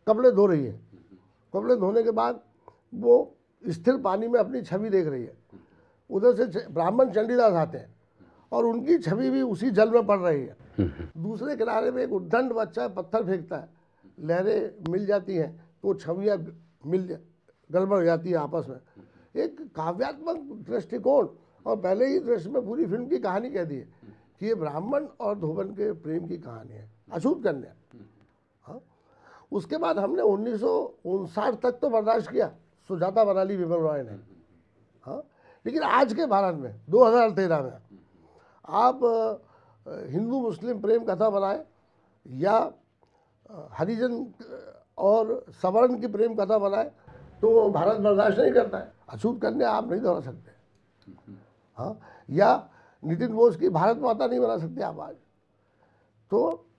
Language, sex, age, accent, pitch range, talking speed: Hindi, male, 60-79, native, 165-235 Hz, 150 wpm